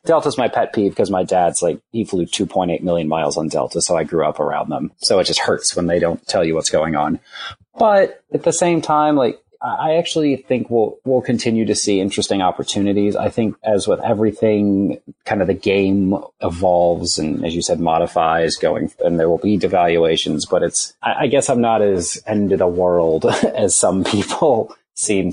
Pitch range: 95-130 Hz